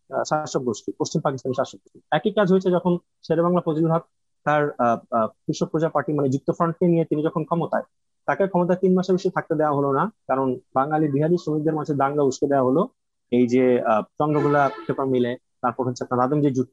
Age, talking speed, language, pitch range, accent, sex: 30-49, 135 wpm, Bengali, 130-170 Hz, native, male